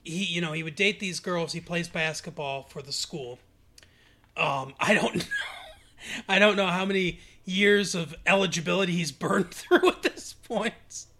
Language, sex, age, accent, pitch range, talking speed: English, male, 30-49, American, 140-185 Hz, 170 wpm